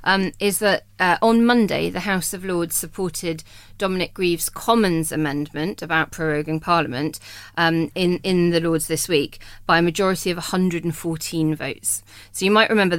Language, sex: English, female